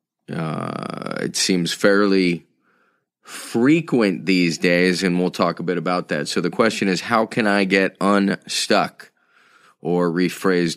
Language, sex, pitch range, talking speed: English, male, 85-95 Hz, 140 wpm